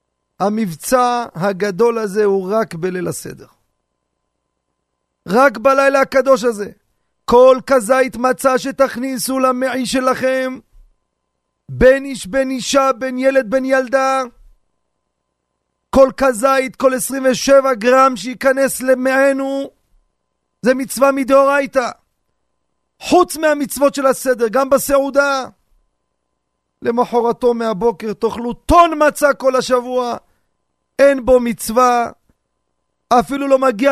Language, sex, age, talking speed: Hebrew, male, 40-59, 95 wpm